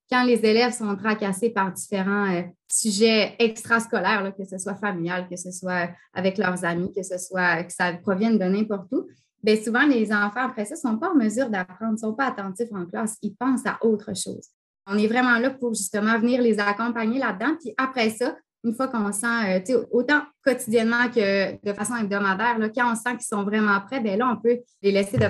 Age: 20-39